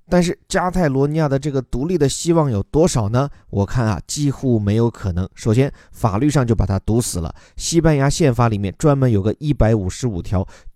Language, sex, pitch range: Chinese, male, 105-140 Hz